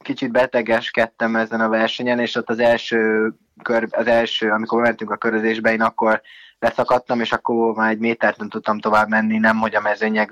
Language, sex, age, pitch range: Hungarian, male, 20-39, 110-115 Hz